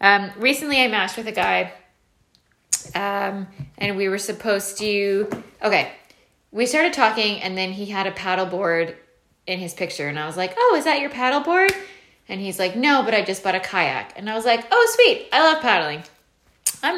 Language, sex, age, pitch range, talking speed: English, female, 10-29, 190-255 Hz, 200 wpm